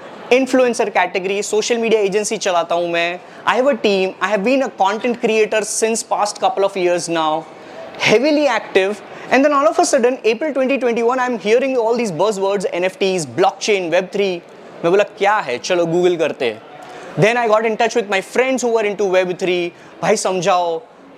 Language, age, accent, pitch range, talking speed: English, 20-39, Indian, 190-265 Hz, 170 wpm